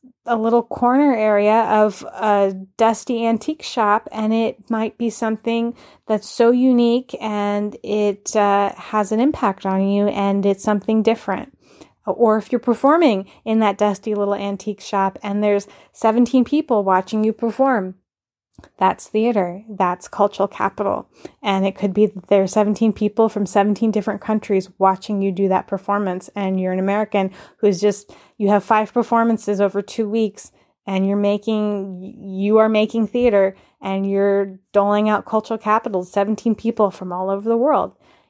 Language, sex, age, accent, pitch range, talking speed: English, female, 10-29, American, 195-225 Hz, 160 wpm